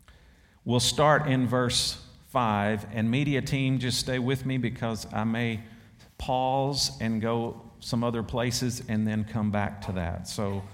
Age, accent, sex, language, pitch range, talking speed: 50-69, American, male, English, 110-140 Hz, 155 wpm